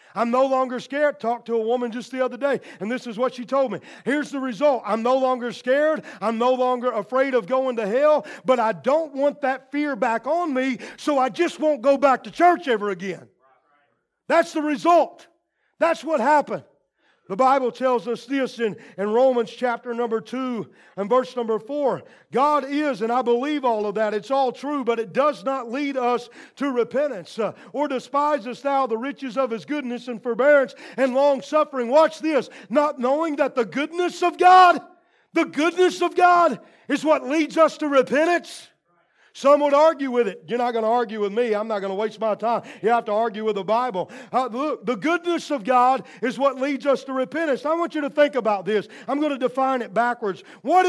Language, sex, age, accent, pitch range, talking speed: English, male, 40-59, American, 235-290 Hz, 210 wpm